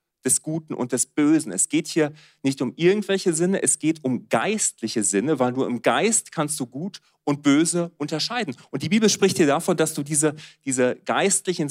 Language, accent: German, German